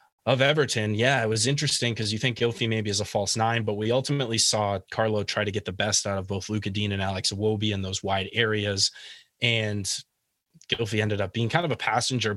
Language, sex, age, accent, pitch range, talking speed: English, male, 20-39, American, 105-120 Hz, 225 wpm